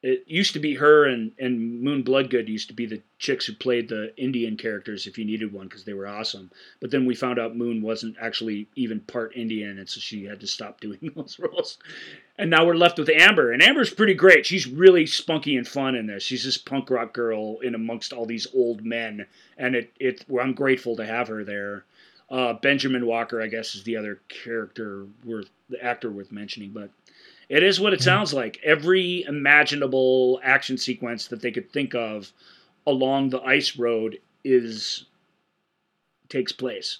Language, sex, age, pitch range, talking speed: English, male, 30-49, 115-145 Hz, 200 wpm